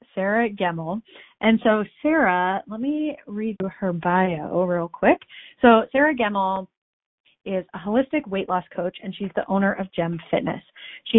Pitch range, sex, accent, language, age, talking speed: 180-230 Hz, female, American, English, 30-49, 155 wpm